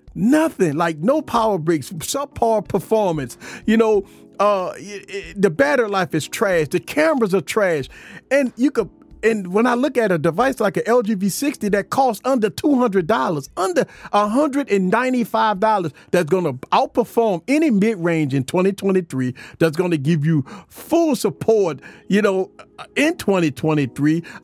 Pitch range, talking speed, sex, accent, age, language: 170-235 Hz, 140 wpm, male, American, 40-59, English